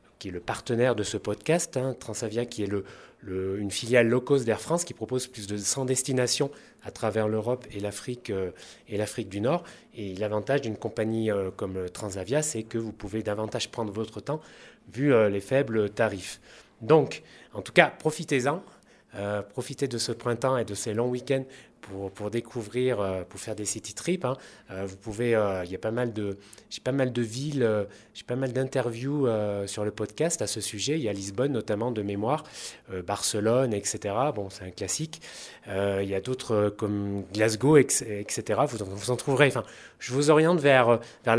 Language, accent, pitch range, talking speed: French, French, 105-130 Hz, 185 wpm